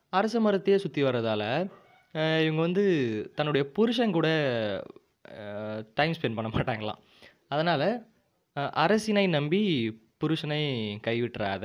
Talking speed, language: 95 wpm, Tamil